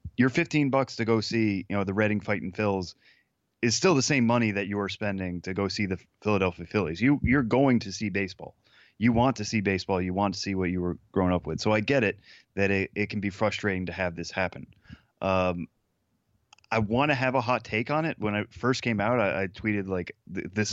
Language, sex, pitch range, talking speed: English, male, 95-110 Hz, 240 wpm